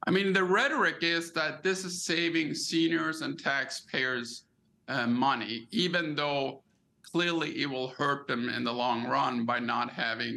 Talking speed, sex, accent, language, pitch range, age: 160 wpm, male, American, English, 125-165 Hz, 50-69